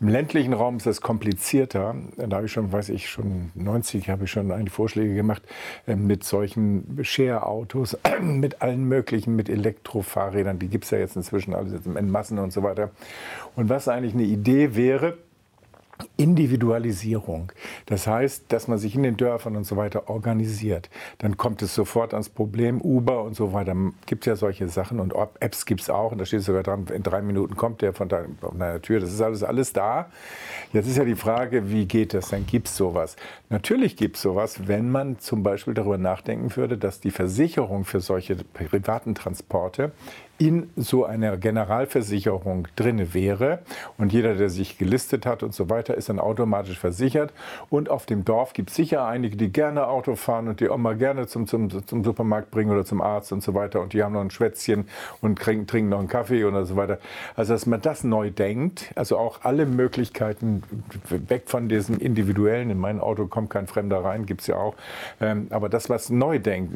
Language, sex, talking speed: German, male, 200 wpm